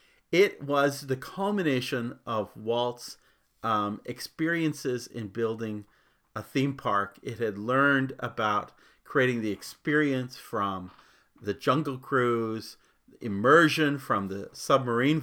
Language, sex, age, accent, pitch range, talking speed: English, male, 40-59, American, 115-145 Hz, 110 wpm